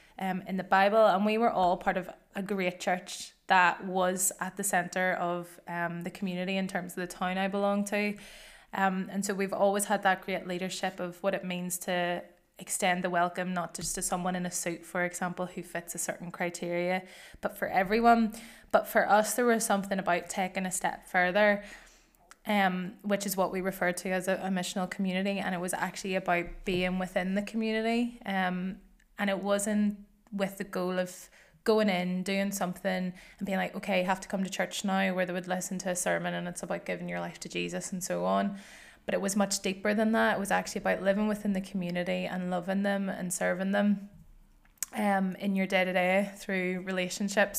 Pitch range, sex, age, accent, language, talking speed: 180-200 Hz, female, 20-39, Irish, English, 205 wpm